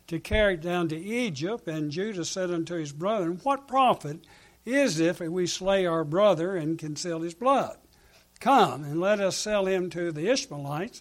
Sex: male